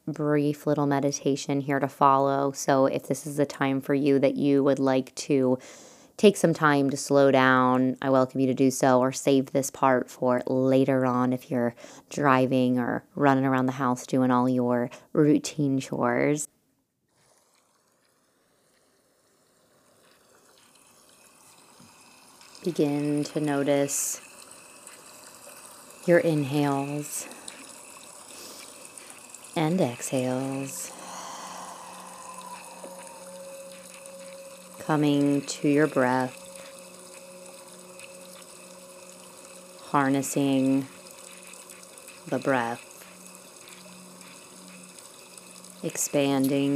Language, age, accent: English, 30-49, American